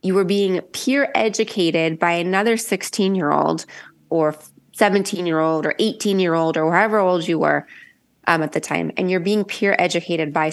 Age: 20-39